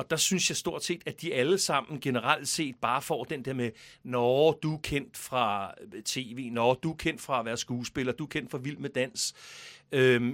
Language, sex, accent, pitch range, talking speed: Danish, male, native, 125-155 Hz, 225 wpm